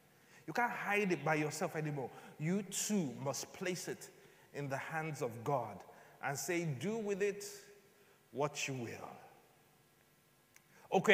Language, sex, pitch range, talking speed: English, male, 170-220 Hz, 140 wpm